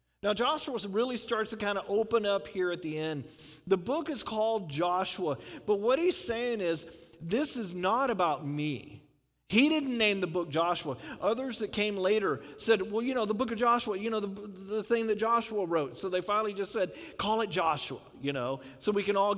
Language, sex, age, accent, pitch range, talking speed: English, male, 40-59, American, 175-225 Hz, 210 wpm